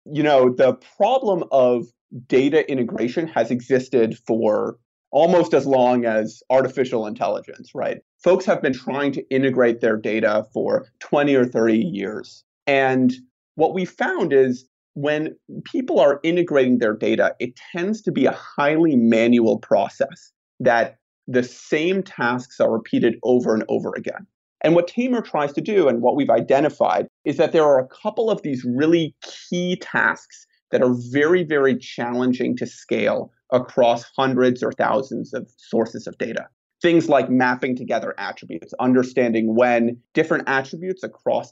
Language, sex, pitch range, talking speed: English, male, 125-165 Hz, 150 wpm